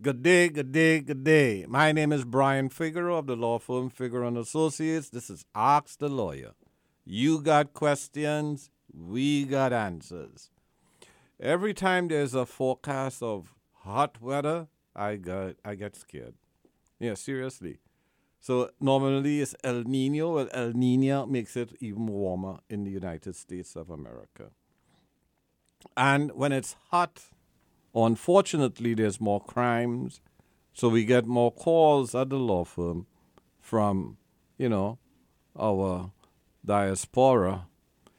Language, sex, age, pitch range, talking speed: English, male, 60-79, 95-140 Hz, 130 wpm